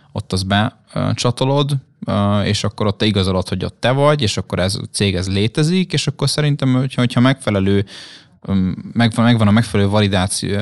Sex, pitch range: male, 95-115 Hz